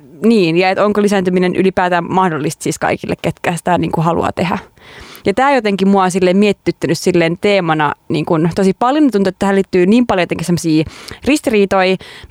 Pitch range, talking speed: 180-215 Hz, 175 wpm